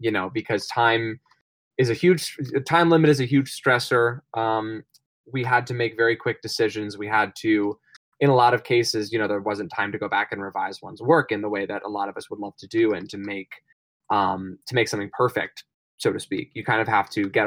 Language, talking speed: English, 240 wpm